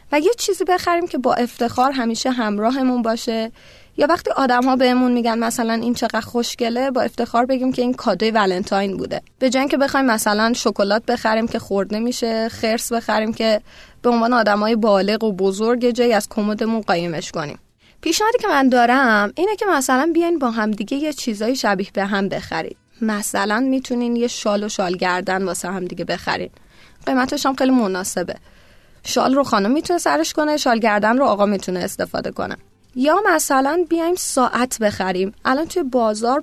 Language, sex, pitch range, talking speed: Persian, female, 215-270 Hz, 165 wpm